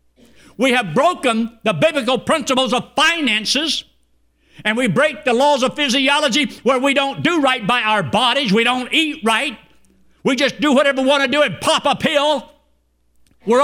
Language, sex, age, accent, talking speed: English, male, 60-79, American, 175 wpm